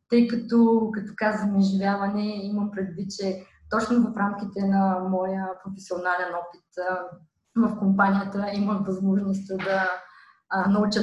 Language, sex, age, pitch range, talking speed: Bulgarian, female, 20-39, 185-225 Hz, 115 wpm